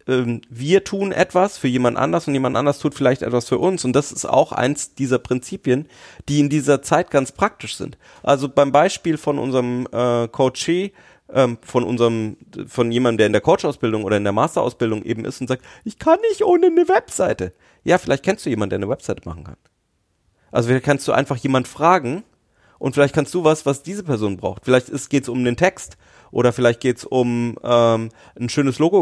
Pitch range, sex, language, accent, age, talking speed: 120-155 Hz, male, German, German, 30-49, 200 wpm